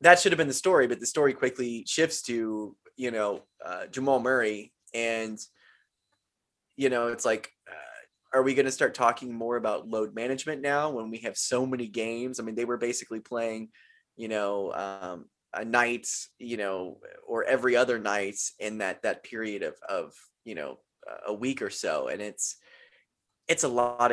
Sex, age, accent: male, 20-39, American